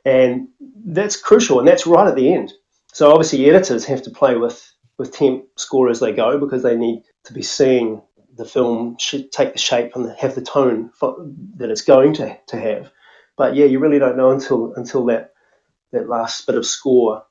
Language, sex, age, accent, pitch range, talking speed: English, male, 30-49, Australian, 120-140 Hz, 200 wpm